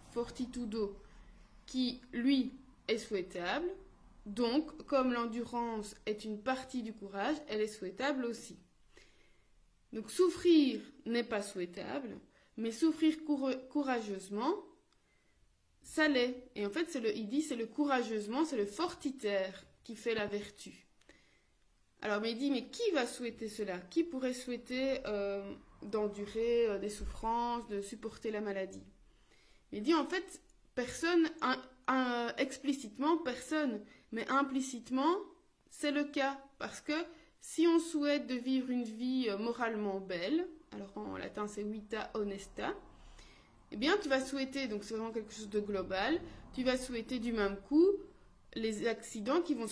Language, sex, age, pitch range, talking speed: French, female, 20-39, 210-275 Hz, 145 wpm